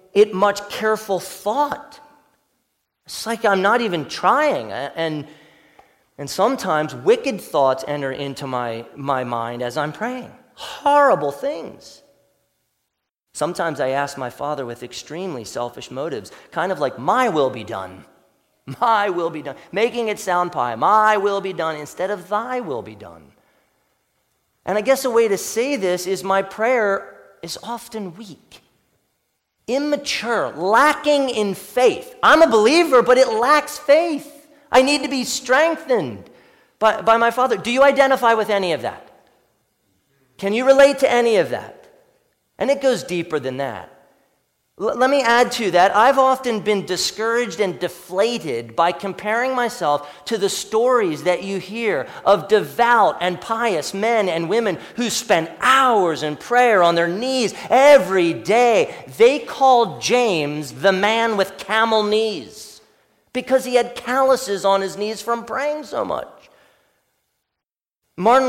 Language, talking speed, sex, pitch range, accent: English, 150 wpm, male, 180-255 Hz, American